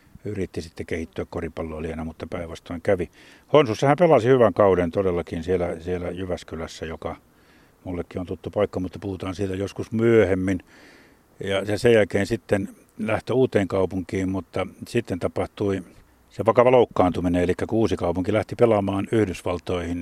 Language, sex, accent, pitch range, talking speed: Finnish, male, native, 90-100 Hz, 140 wpm